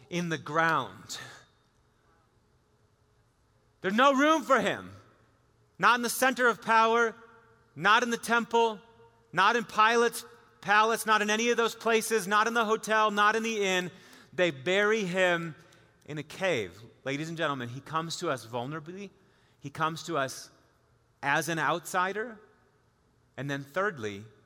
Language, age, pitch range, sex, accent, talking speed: English, 30-49, 155-215 Hz, male, American, 145 wpm